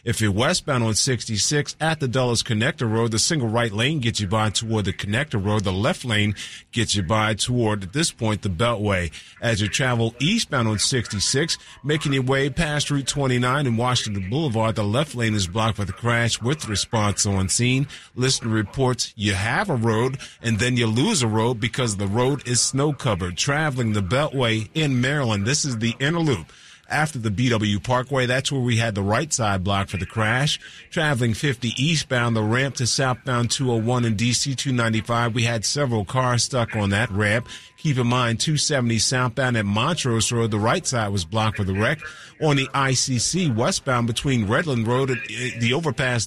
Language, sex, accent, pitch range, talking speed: English, male, American, 110-135 Hz, 190 wpm